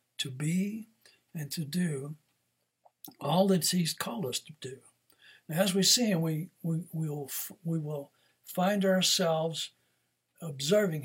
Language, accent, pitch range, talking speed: English, American, 140-180 Hz, 120 wpm